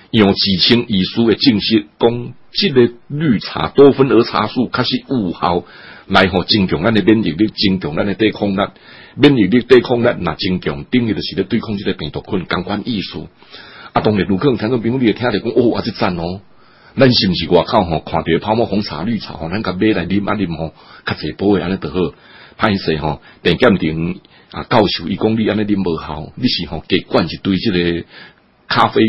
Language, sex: Chinese, male